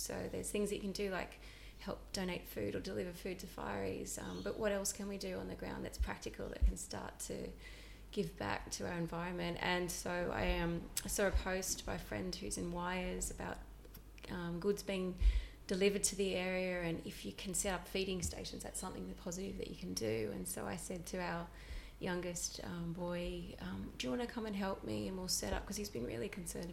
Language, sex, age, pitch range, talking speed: English, female, 20-39, 170-195 Hz, 225 wpm